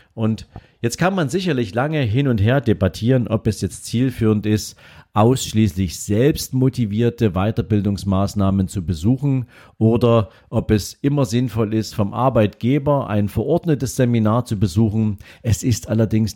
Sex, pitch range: male, 105-125 Hz